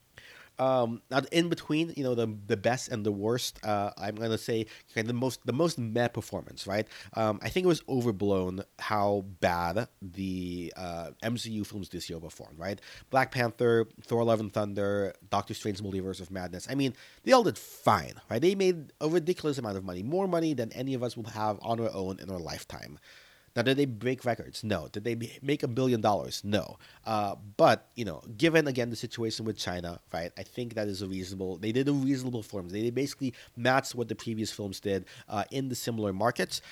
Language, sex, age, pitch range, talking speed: English, male, 30-49, 100-125 Hz, 210 wpm